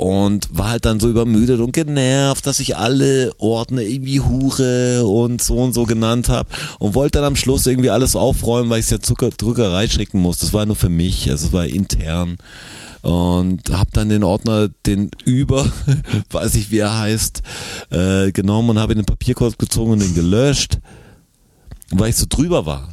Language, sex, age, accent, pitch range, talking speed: German, male, 40-59, German, 85-115 Hz, 190 wpm